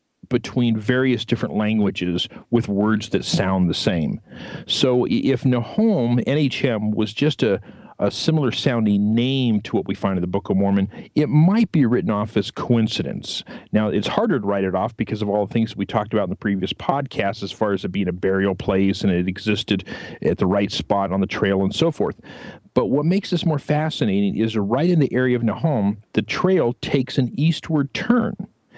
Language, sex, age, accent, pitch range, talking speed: English, male, 40-59, American, 105-140 Hz, 200 wpm